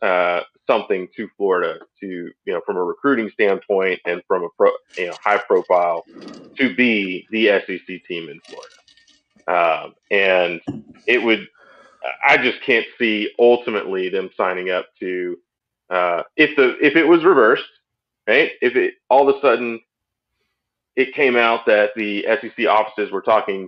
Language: English